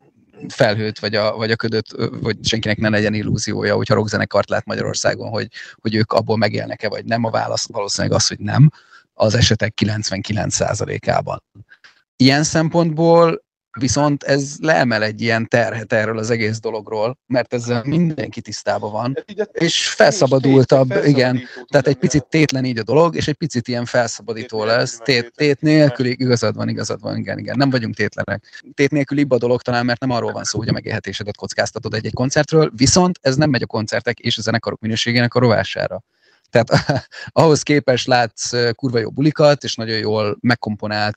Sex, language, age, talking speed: male, Hungarian, 30-49, 170 wpm